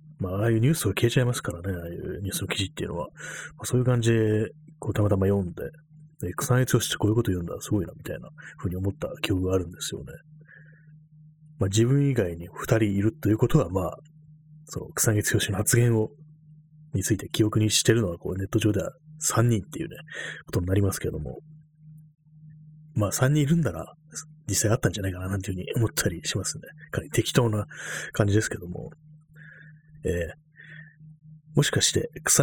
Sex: male